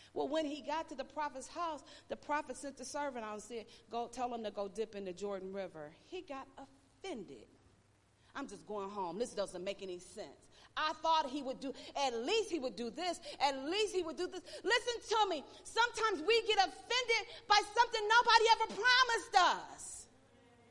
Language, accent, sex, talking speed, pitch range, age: English, American, female, 195 wpm, 270-455 Hz, 40-59